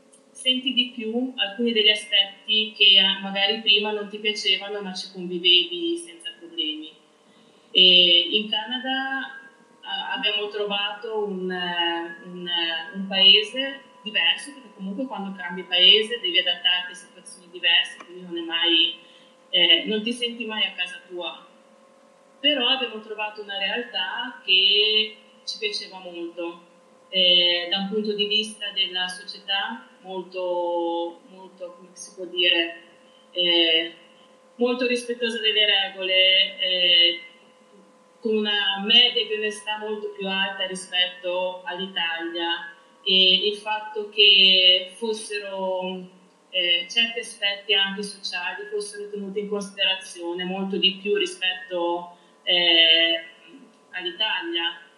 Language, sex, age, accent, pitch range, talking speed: Italian, female, 30-49, native, 180-230 Hz, 110 wpm